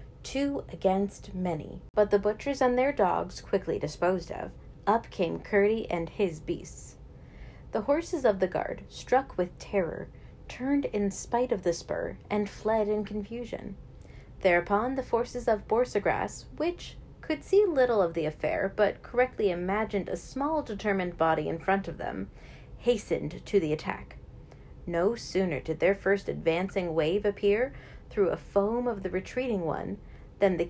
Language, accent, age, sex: English, American, 40-59, female